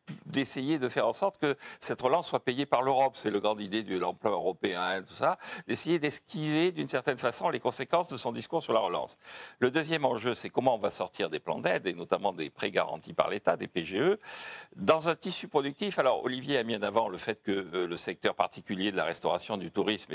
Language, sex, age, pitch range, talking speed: French, male, 60-79, 110-185 Hz, 230 wpm